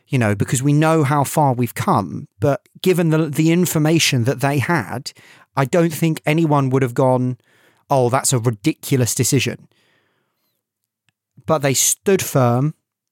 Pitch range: 120-150 Hz